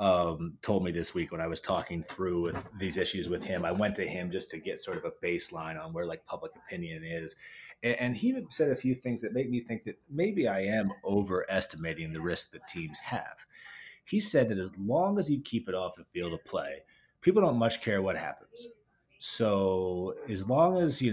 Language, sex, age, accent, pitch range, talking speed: English, male, 30-49, American, 95-135 Hz, 225 wpm